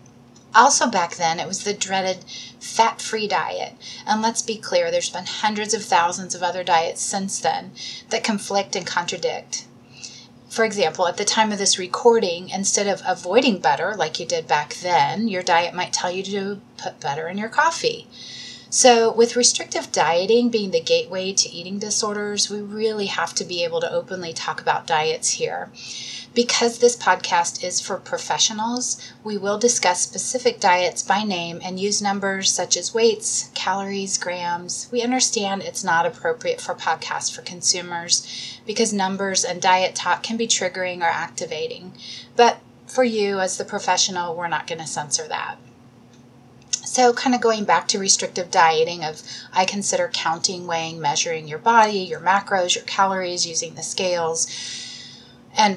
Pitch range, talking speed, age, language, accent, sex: 170-225 Hz, 165 wpm, 30-49, English, American, female